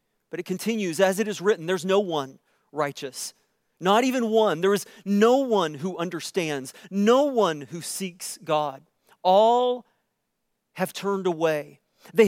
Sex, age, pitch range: male, 40-59, 180-230 Hz